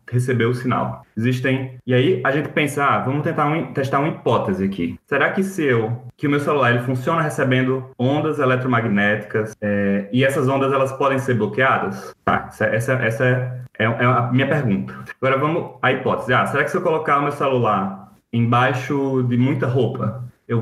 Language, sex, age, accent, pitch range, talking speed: Portuguese, male, 20-39, Brazilian, 110-145 Hz, 190 wpm